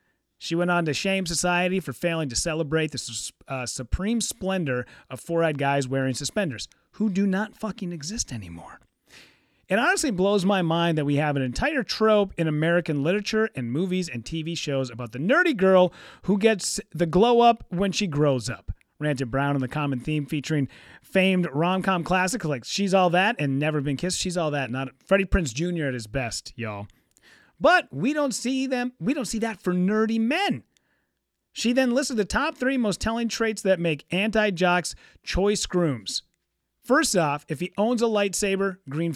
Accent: American